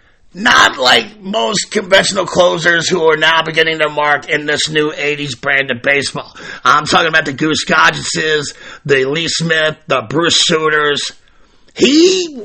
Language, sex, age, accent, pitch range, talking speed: English, male, 50-69, American, 150-200 Hz, 150 wpm